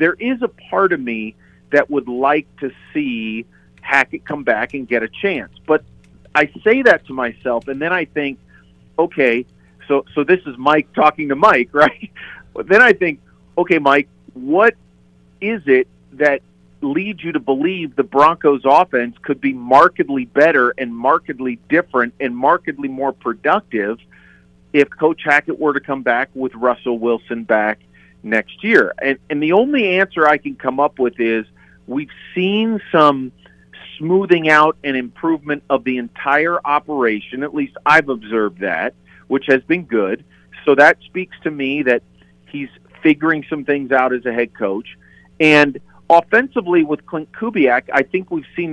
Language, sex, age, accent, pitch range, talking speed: English, male, 50-69, American, 125-165 Hz, 165 wpm